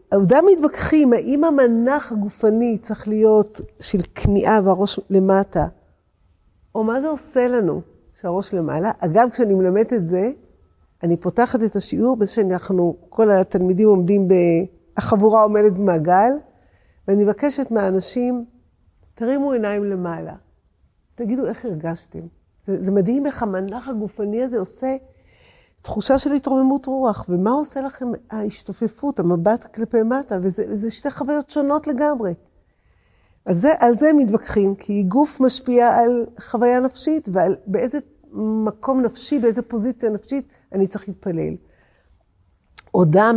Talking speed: 125 wpm